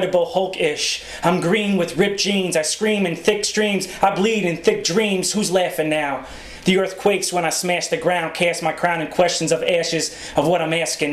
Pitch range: 165-185 Hz